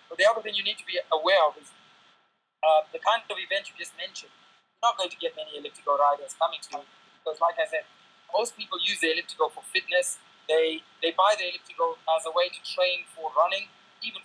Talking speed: 230 wpm